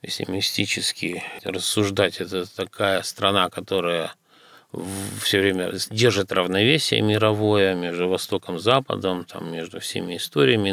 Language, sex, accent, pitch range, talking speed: Russian, male, native, 95-115 Hz, 105 wpm